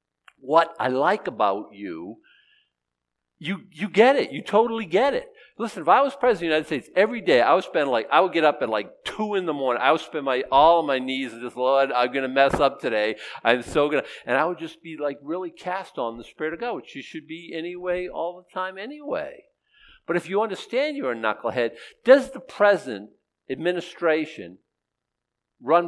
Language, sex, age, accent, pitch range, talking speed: English, male, 50-69, American, 135-215 Hz, 215 wpm